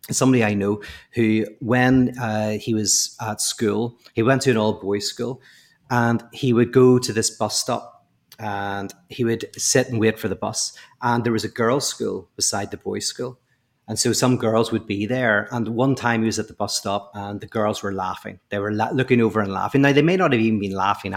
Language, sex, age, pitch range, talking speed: English, male, 30-49, 105-130 Hz, 220 wpm